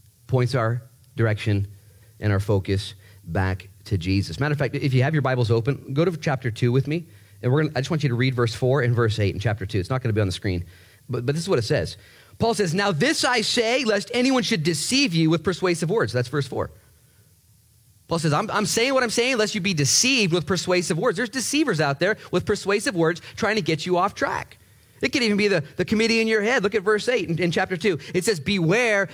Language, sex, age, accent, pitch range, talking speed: English, male, 30-49, American, 120-195 Hz, 250 wpm